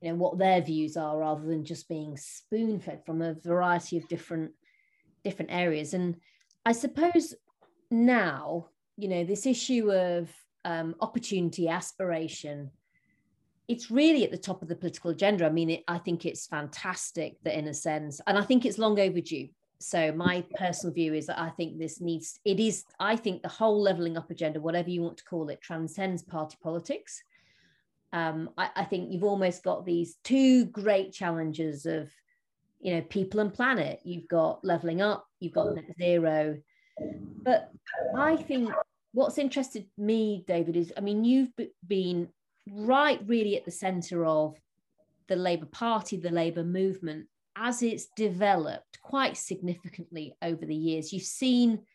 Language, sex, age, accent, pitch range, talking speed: English, female, 30-49, British, 165-210 Hz, 165 wpm